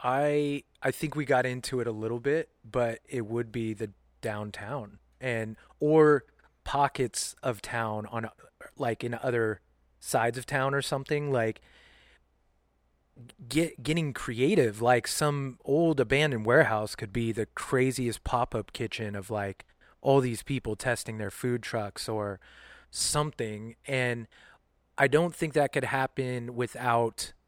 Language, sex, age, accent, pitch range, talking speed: English, male, 30-49, American, 110-135 Hz, 140 wpm